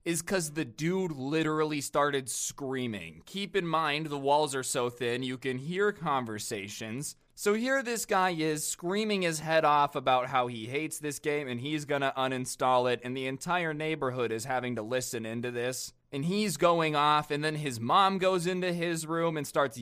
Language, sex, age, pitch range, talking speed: English, male, 20-39, 130-160 Hz, 190 wpm